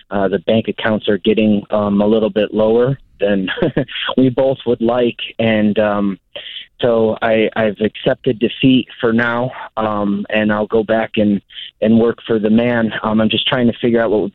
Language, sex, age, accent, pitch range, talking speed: English, male, 30-49, American, 105-120 Hz, 190 wpm